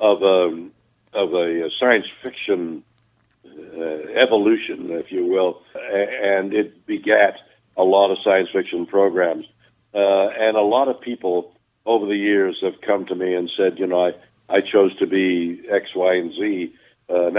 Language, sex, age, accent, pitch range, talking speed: English, male, 60-79, American, 90-110 Hz, 165 wpm